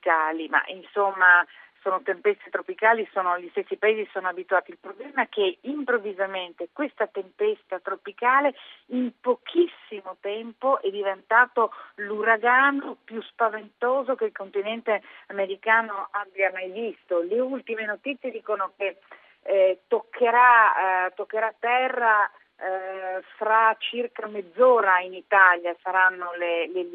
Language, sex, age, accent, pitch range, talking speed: Italian, female, 40-59, native, 190-230 Hz, 120 wpm